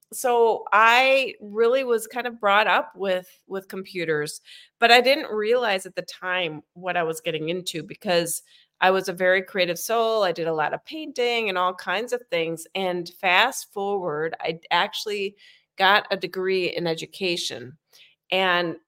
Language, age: English, 30-49